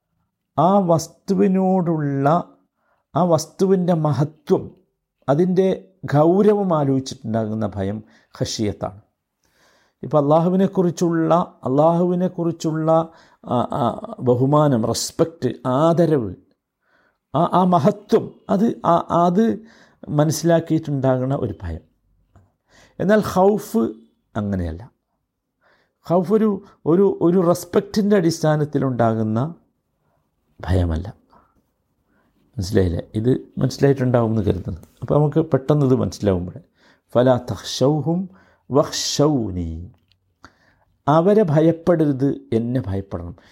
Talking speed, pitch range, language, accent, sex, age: 70 wpm, 115-175 Hz, Malayalam, native, male, 50-69